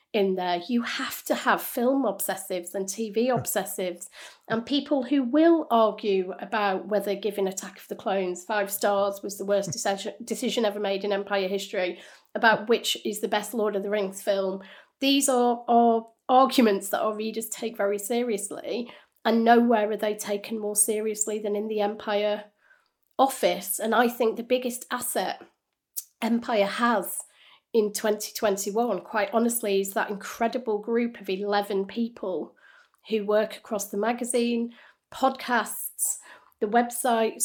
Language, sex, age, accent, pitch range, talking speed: English, female, 30-49, British, 200-235 Hz, 150 wpm